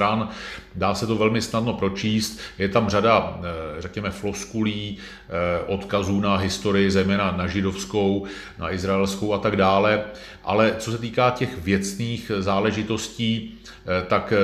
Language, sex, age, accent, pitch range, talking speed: Czech, male, 40-59, native, 95-110 Hz, 125 wpm